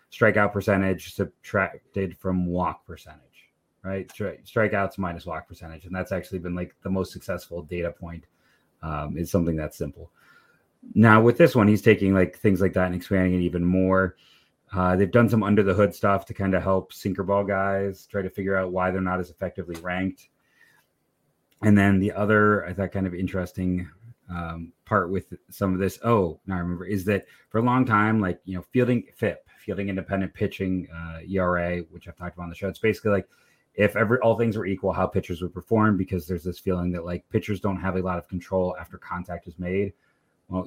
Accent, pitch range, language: American, 90-100 Hz, English